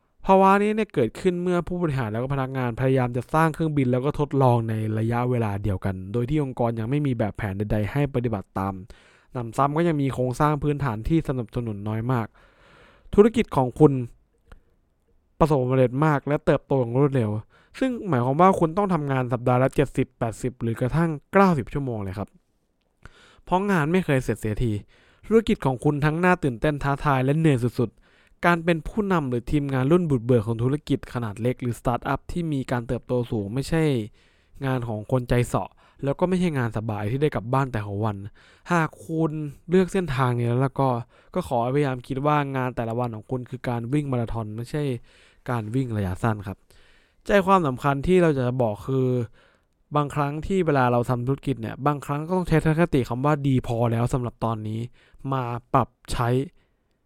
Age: 20-39